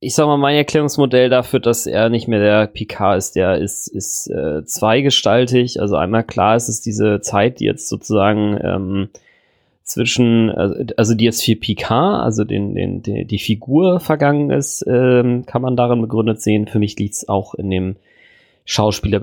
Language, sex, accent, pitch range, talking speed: German, male, German, 105-125 Hz, 180 wpm